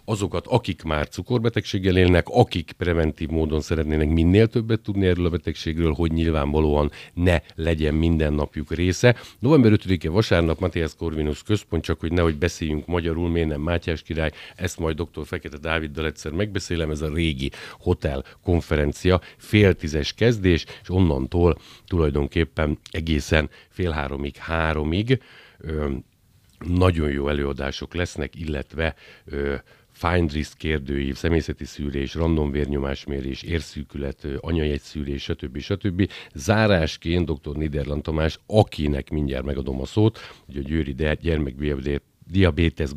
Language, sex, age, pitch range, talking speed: Hungarian, male, 50-69, 70-85 Hz, 125 wpm